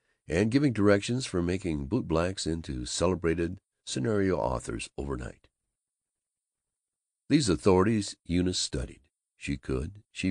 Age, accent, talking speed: 60-79, American, 105 wpm